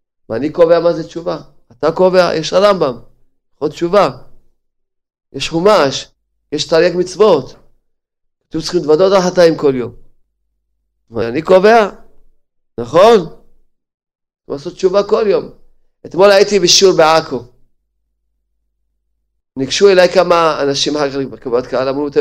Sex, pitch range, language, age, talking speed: male, 125-170 Hz, Hebrew, 40-59, 115 wpm